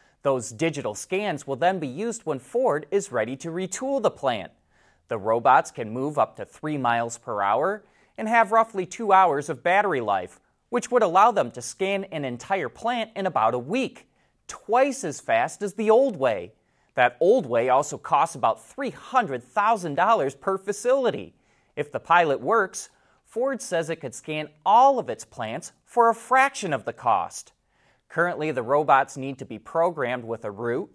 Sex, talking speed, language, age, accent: male, 175 wpm, English, 30-49, American